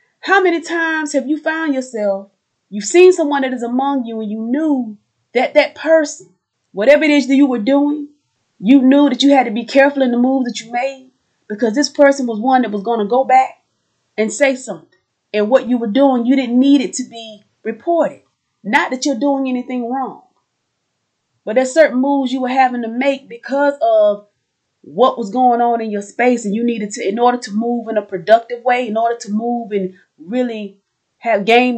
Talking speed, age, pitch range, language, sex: 210 wpm, 30-49, 225-280 Hz, English, female